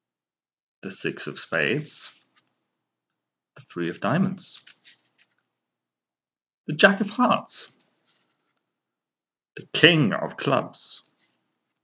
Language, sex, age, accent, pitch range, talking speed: English, male, 40-59, British, 95-140 Hz, 80 wpm